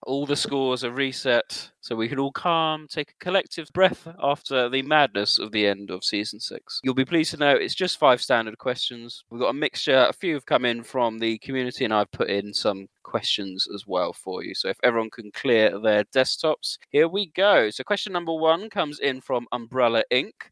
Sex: male